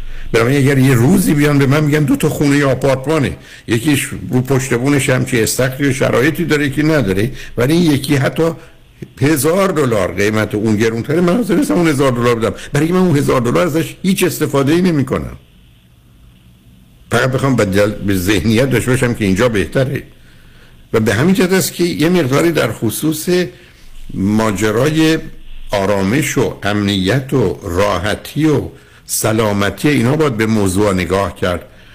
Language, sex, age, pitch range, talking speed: Persian, male, 60-79, 105-150 Hz, 150 wpm